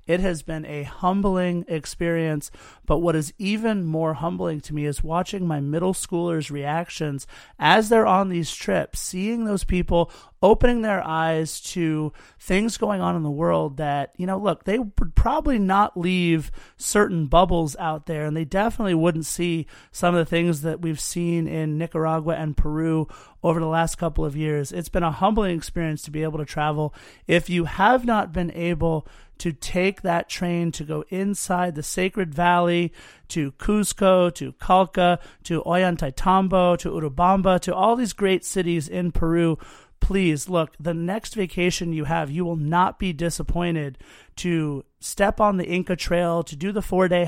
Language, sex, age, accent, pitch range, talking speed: English, male, 30-49, American, 160-185 Hz, 175 wpm